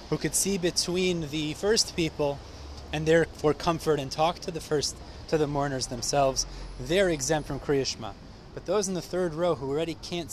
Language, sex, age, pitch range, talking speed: English, male, 30-49, 125-165 Hz, 185 wpm